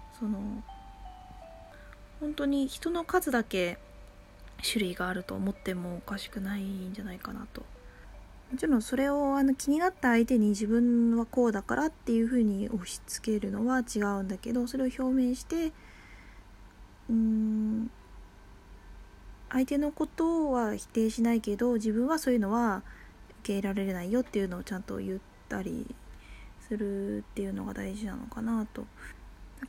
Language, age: Japanese, 20-39